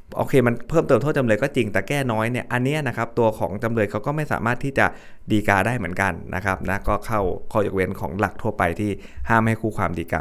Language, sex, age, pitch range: Thai, male, 20-39, 95-120 Hz